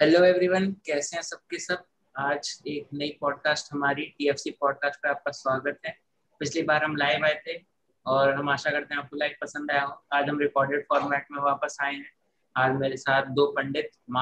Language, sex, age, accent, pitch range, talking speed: Hindi, male, 20-39, native, 140-165 Hz, 90 wpm